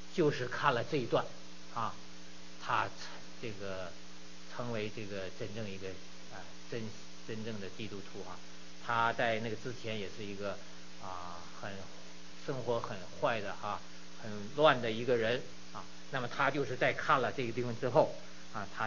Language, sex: Chinese, male